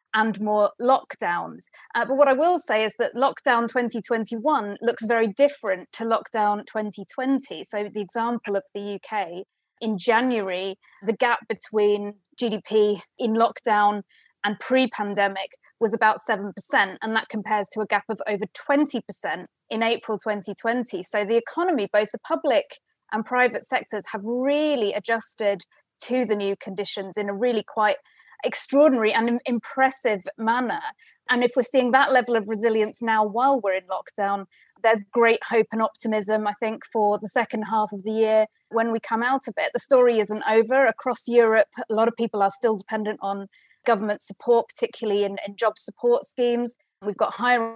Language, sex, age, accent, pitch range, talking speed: English, female, 20-39, British, 210-245 Hz, 165 wpm